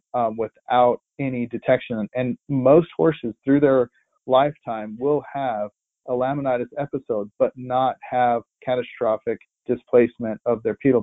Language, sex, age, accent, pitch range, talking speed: English, male, 40-59, American, 115-135 Hz, 125 wpm